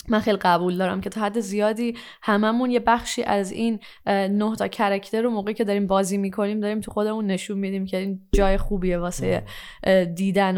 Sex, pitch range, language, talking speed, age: female, 185-235 Hz, Persian, 185 wpm, 10-29